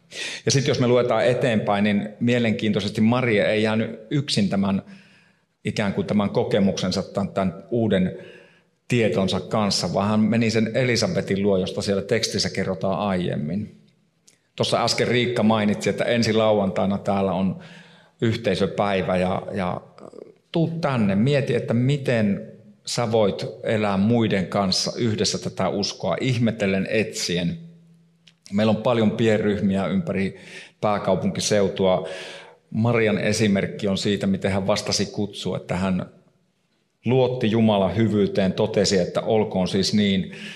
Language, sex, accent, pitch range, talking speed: Finnish, male, native, 100-150 Hz, 125 wpm